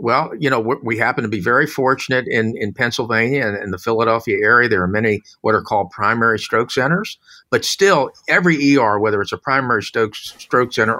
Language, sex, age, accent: English, male, 50-69, American